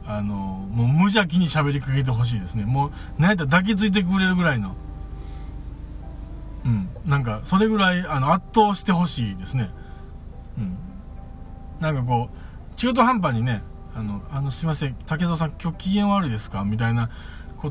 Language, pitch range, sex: Japanese, 105-175 Hz, male